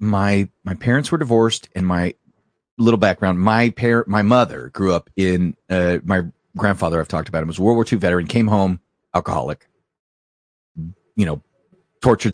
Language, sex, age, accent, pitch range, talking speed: English, male, 30-49, American, 90-115 Hz, 165 wpm